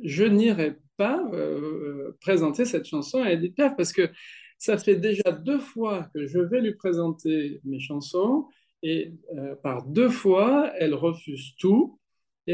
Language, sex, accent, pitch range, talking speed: French, male, French, 150-240 Hz, 160 wpm